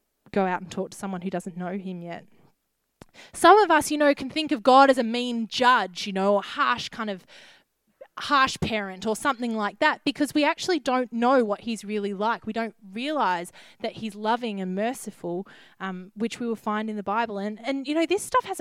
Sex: female